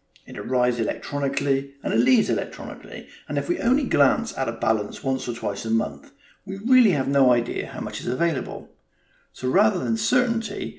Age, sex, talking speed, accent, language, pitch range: 50-69, male, 185 wpm, British, English, 115-195 Hz